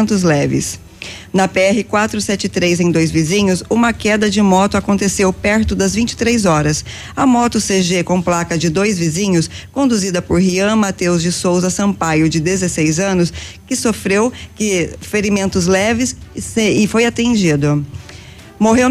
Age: 20-39